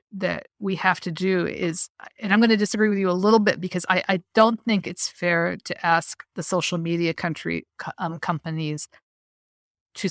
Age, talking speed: 50-69, 190 wpm